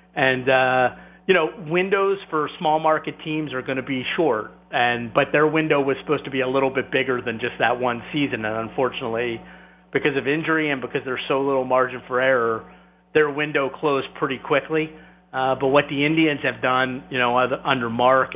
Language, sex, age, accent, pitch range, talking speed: English, male, 40-59, American, 125-150 Hz, 195 wpm